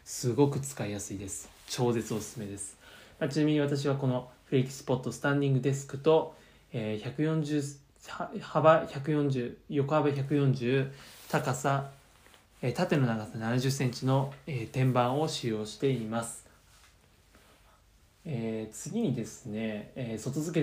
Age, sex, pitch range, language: 20-39, male, 115-150 Hz, Japanese